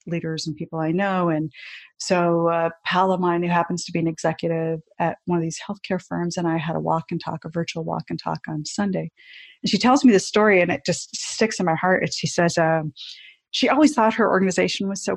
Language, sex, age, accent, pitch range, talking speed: English, female, 40-59, American, 170-205 Hz, 240 wpm